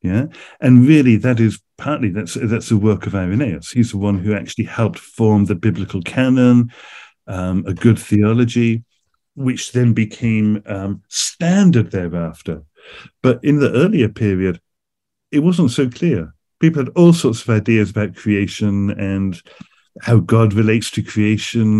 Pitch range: 100-125 Hz